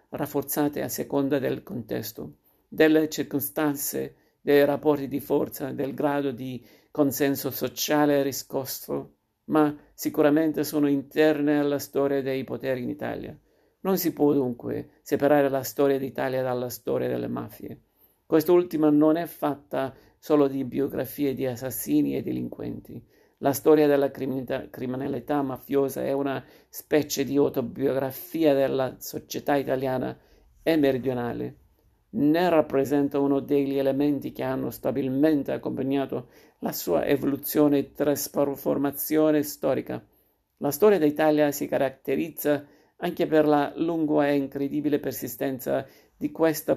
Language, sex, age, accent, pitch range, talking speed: Italian, male, 50-69, native, 135-150 Hz, 120 wpm